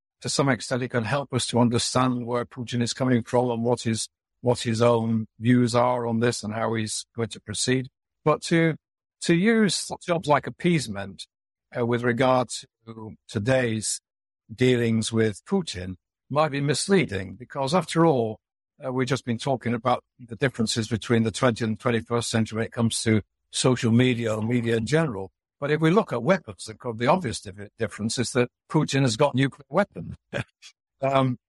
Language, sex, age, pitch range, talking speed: English, male, 60-79, 110-135 Hz, 175 wpm